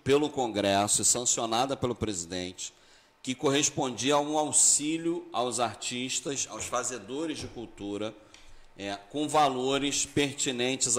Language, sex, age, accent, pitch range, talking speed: Portuguese, male, 40-59, Brazilian, 115-150 Hz, 115 wpm